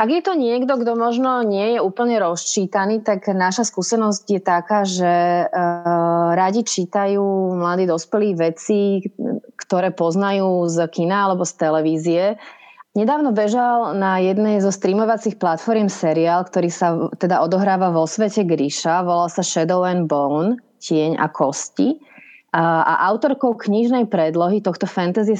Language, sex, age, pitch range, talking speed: Slovak, female, 30-49, 170-210 Hz, 135 wpm